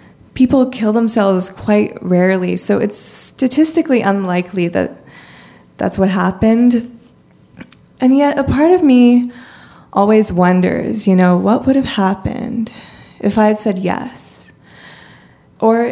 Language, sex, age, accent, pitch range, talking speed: English, female, 20-39, American, 190-230 Hz, 125 wpm